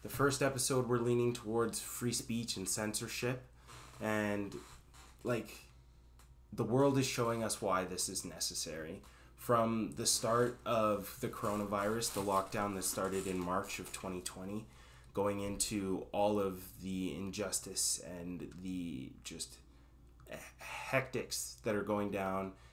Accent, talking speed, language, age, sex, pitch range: American, 130 wpm, English, 20-39, male, 90-105 Hz